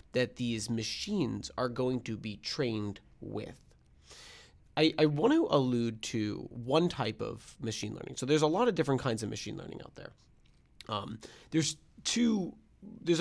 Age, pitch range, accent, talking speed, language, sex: 30-49, 115-155 Hz, American, 165 wpm, English, male